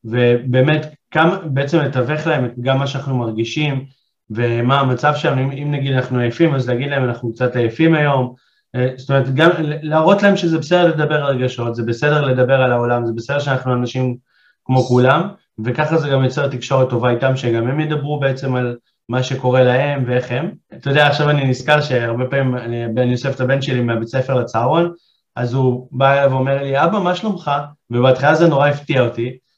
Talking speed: 185 wpm